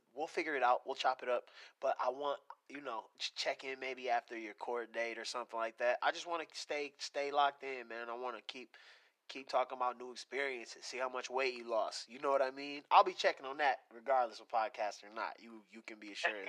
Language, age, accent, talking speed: English, 20-39, American, 250 wpm